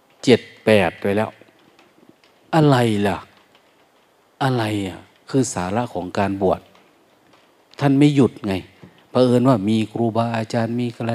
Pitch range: 105-135 Hz